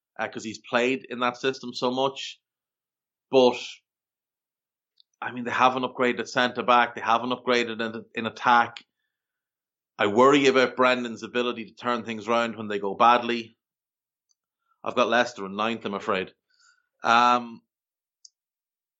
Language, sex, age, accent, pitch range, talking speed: English, male, 30-49, Irish, 115-140 Hz, 135 wpm